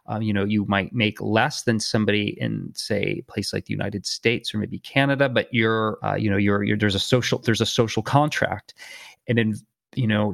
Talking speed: 220 wpm